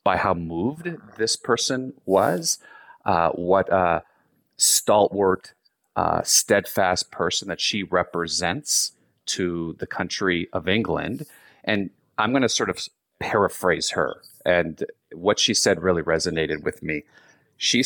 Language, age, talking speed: English, 40-59, 130 wpm